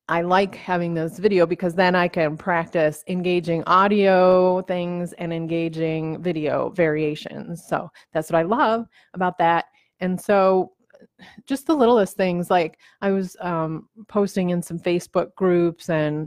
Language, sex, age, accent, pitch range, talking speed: English, female, 30-49, American, 160-195 Hz, 150 wpm